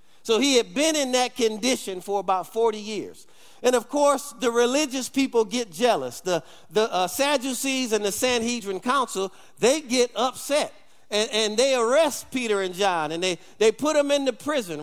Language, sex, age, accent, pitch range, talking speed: English, male, 50-69, American, 210-275 Hz, 180 wpm